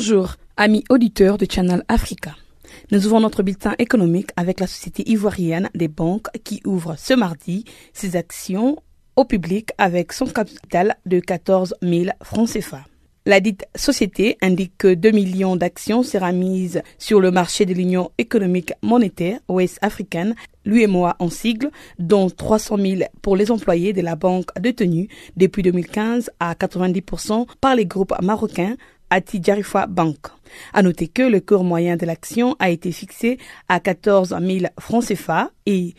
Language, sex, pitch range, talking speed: French, female, 180-220 Hz, 150 wpm